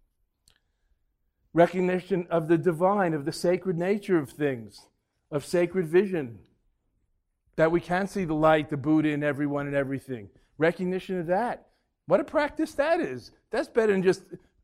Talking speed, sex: 150 wpm, male